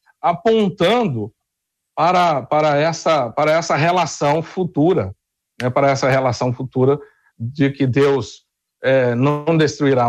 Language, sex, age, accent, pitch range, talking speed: Portuguese, male, 60-79, Brazilian, 125-165 Hz, 115 wpm